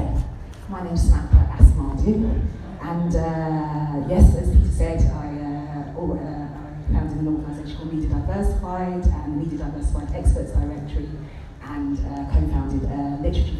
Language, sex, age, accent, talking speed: English, female, 30-49, British, 140 wpm